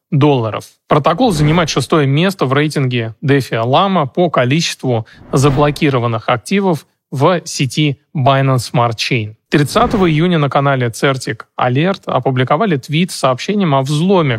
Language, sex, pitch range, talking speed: Russian, male, 135-170 Hz, 125 wpm